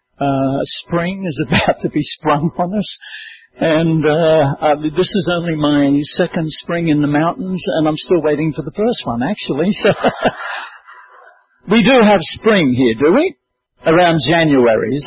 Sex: male